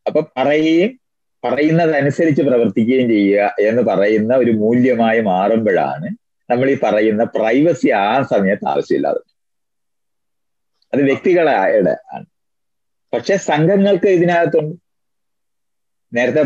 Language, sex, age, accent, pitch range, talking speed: Malayalam, male, 30-49, native, 125-160 Hz, 90 wpm